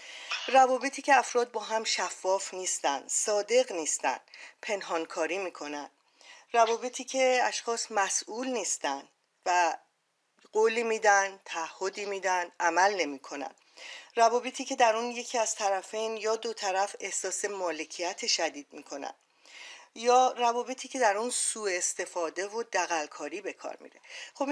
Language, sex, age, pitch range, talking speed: Persian, female, 40-59, 190-250 Hz, 120 wpm